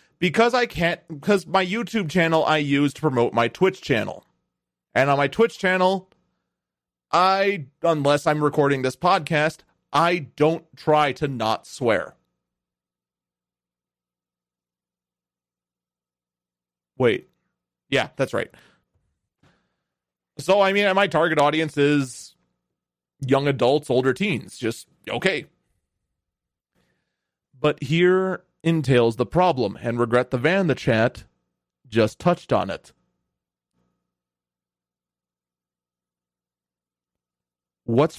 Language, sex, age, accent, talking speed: English, male, 30-49, American, 100 wpm